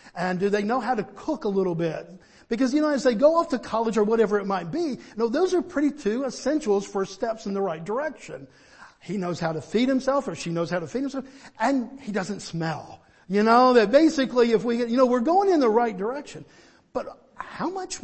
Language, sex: English, male